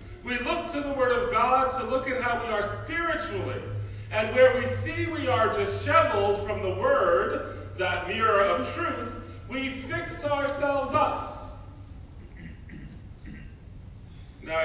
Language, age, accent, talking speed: English, 40-59, American, 140 wpm